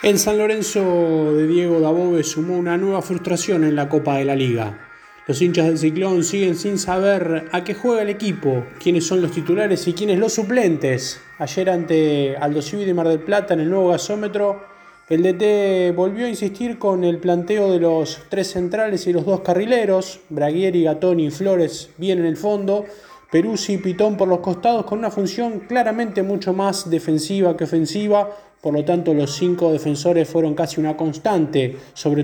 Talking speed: 180 wpm